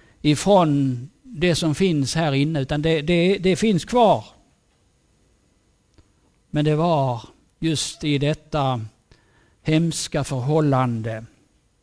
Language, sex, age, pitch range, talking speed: Swedish, male, 60-79, 125-160 Hz, 95 wpm